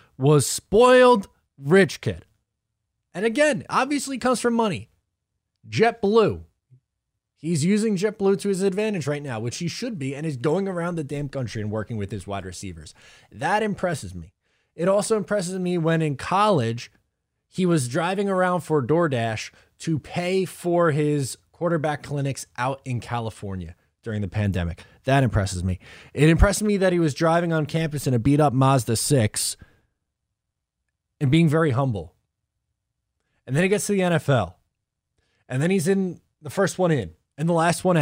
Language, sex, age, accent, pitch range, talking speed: English, male, 20-39, American, 110-175 Hz, 165 wpm